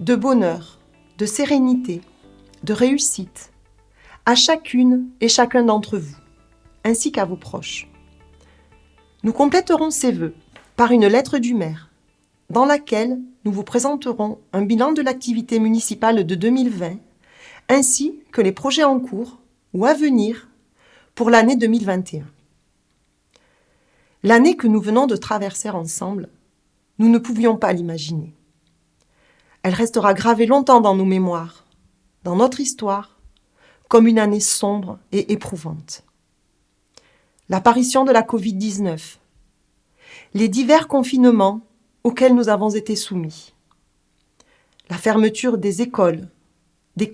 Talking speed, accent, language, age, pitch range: 120 wpm, French, French, 40-59, 180-250 Hz